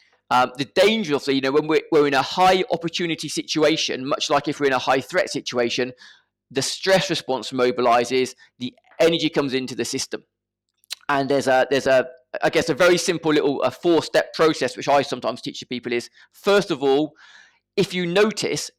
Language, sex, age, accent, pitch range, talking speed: English, male, 20-39, British, 135-170 Hz, 190 wpm